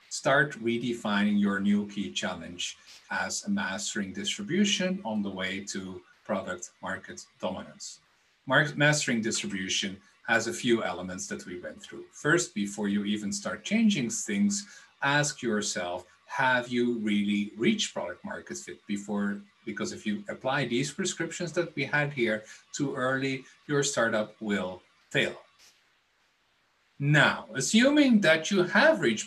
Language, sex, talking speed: English, male, 135 wpm